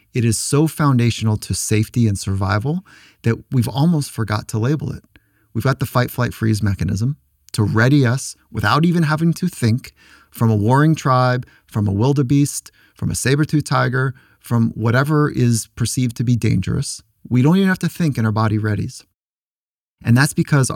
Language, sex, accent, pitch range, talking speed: English, male, American, 105-130 Hz, 170 wpm